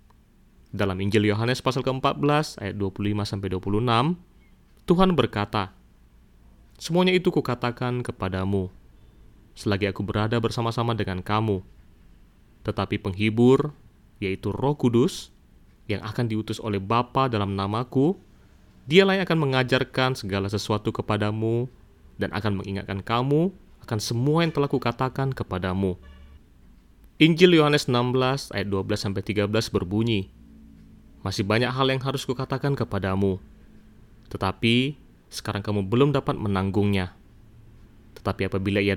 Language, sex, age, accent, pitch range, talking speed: Indonesian, male, 30-49, native, 100-135 Hz, 110 wpm